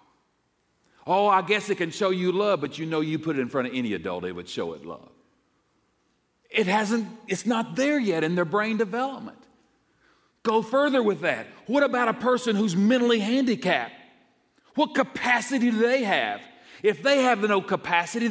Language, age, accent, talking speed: English, 50-69, American, 180 wpm